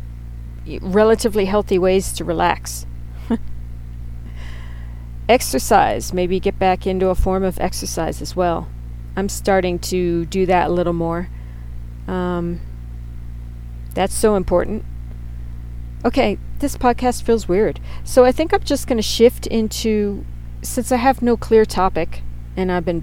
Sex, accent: female, American